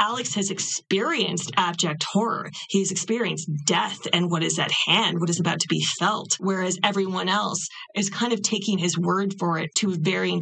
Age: 20-39